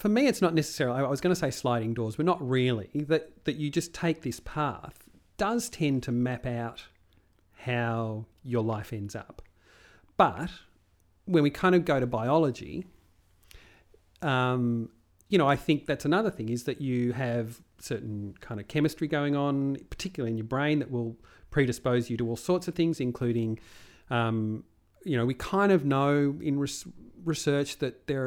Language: English